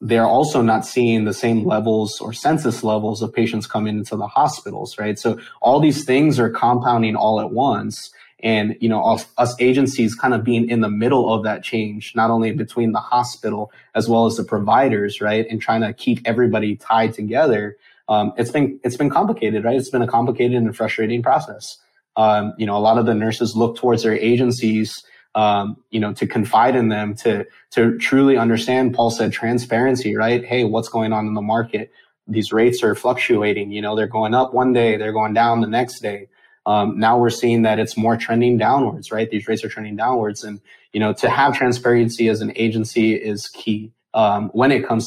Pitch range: 110-120 Hz